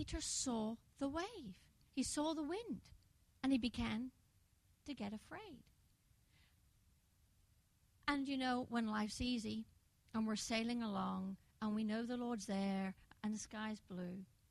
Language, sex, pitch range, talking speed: English, female, 195-285 Hz, 140 wpm